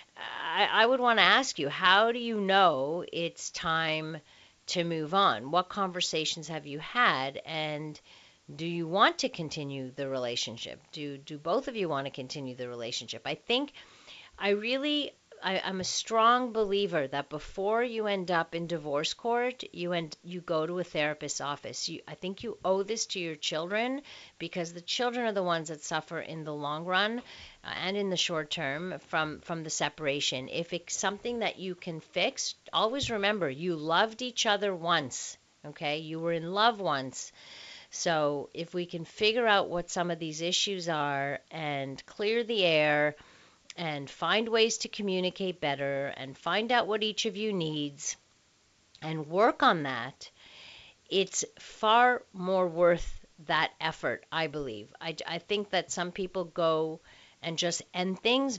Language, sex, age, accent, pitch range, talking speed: English, female, 40-59, American, 155-205 Hz, 170 wpm